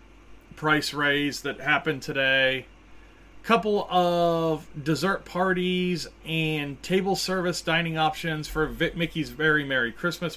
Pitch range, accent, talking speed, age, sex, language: 125-165 Hz, American, 120 wpm, 30-49, male, English